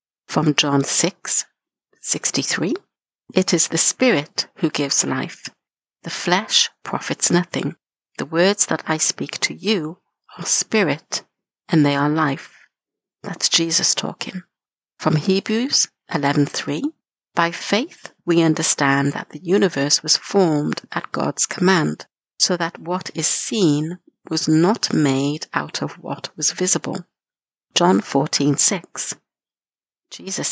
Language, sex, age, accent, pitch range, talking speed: English, female, 60-79, British, 150-190 Hz, 125 wpm